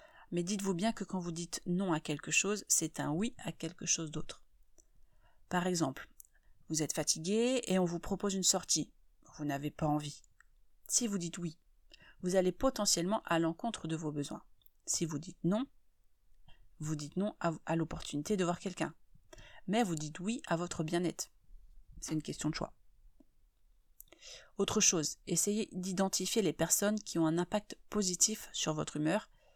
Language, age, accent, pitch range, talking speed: French, 30-49, French, 160-195 Hz, 170 wpm